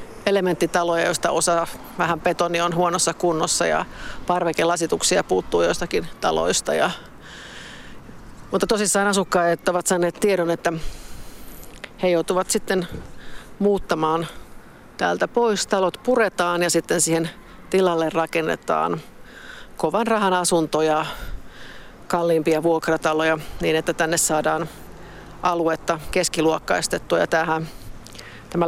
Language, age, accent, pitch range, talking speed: Finnish, 50-69, native, 160-185 Hz, 100 wpm